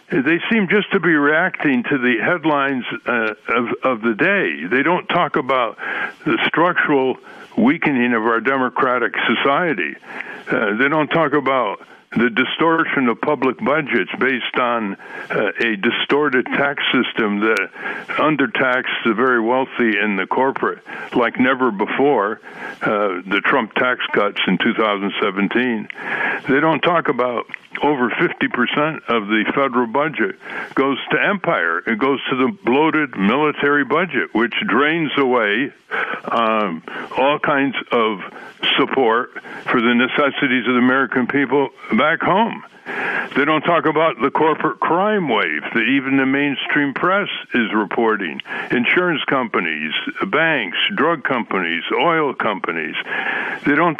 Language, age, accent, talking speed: English, 60-79, American, 135 wpm